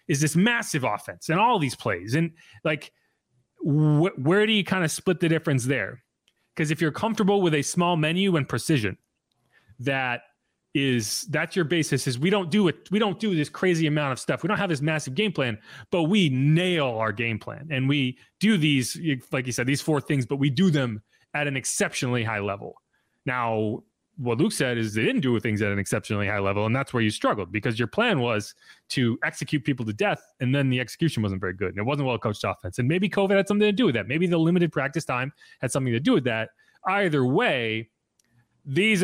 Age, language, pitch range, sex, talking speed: 30-49, English, 120-160 Hz, male, 220 wpm